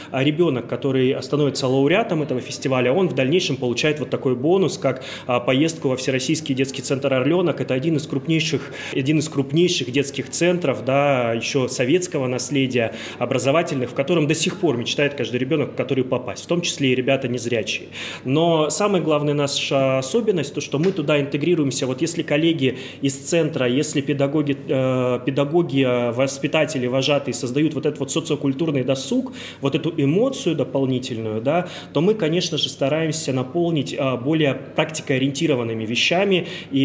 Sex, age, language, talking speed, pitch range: male, 20-39, Russian, 145 wpm, 130-150 Hz